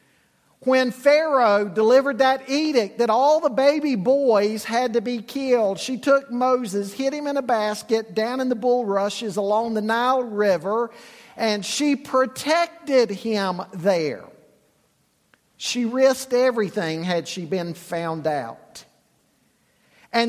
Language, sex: English, male